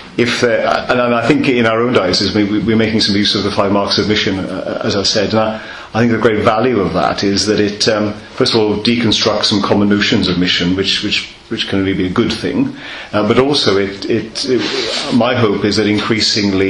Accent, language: British, English